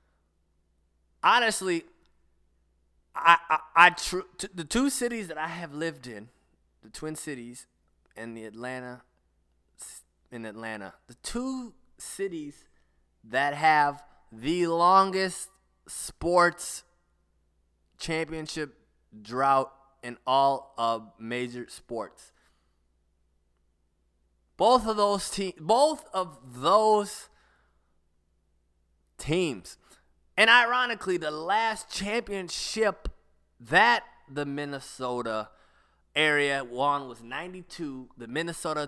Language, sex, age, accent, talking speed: English, male, 20-39, American, 90 wpm